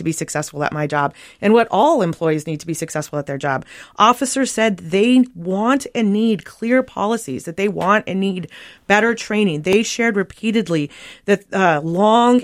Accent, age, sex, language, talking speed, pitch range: American, 30-49, female, English, 185 wpm, 170-220 Hz